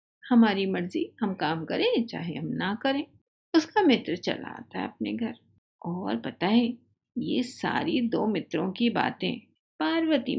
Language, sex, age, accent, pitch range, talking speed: Hindi, female, 50-69, native, 185-280 Hz, 145 wpm